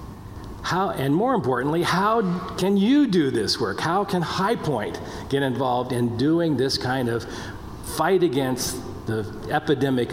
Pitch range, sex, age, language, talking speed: 110-150 Hz, male, 50-69, English, 140 wpm